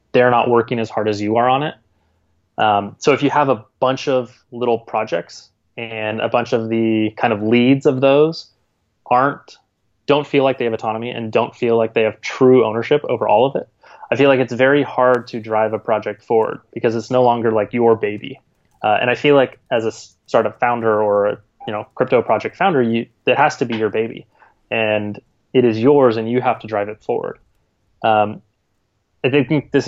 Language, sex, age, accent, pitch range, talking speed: English, male, 20-39, American, 110-125 Hz, 205 wpm